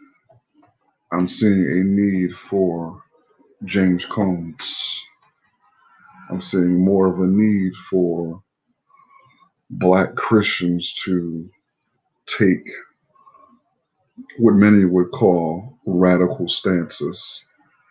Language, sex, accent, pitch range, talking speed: English, male, American, 90-100 Hz, 80 wpm